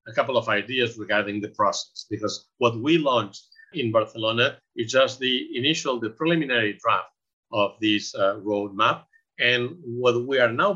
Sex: male